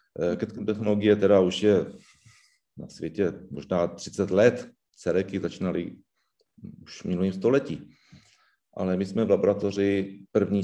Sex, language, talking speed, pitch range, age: male, Czech, 115 wpm, 100-125 Hz, 40-59